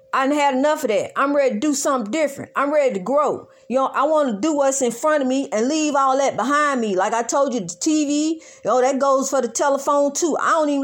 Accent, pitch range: American, 245-320 Hz